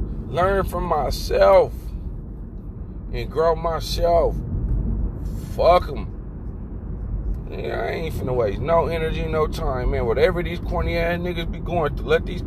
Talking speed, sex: 130 wpm, male